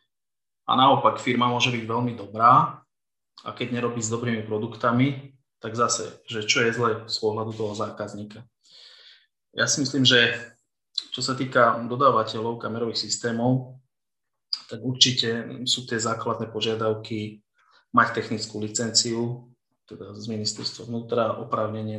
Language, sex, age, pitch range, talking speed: Slovak, male, 20-39, 110-125 Hz, 130 wpm